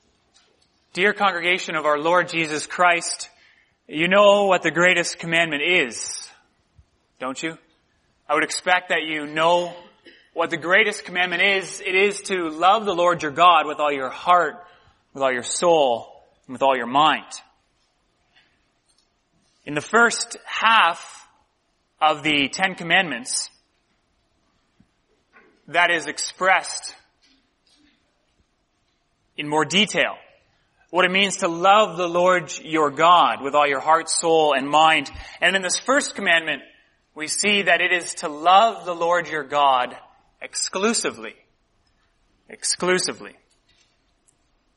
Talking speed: 130 wpm